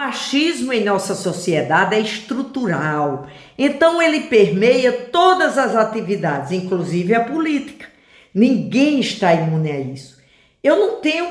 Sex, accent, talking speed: female, Brazilian, 125 wpm